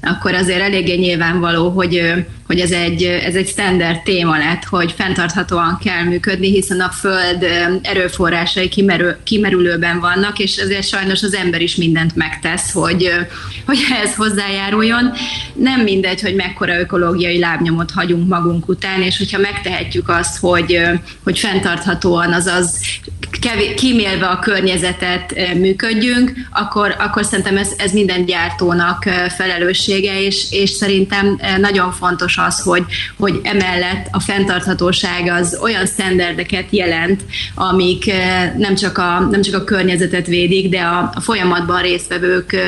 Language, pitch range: Hungarian, 175-200 Hz